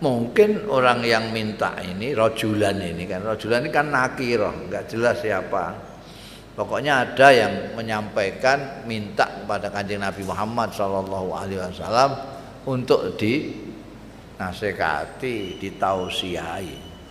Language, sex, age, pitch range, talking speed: Indonesian, male, 50-69, 105-150 Hz, 110 wpm